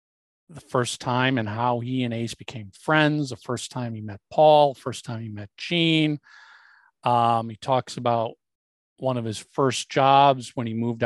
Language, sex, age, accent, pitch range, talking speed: English, male, 50-69, American, 115-150 Hz, 180 wpm